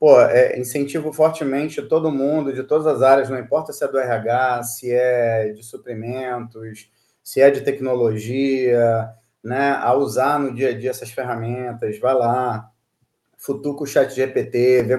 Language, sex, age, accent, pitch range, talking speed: Portuguese, male, 30-49, Brazilian, 120-140 Hz, 155 wpm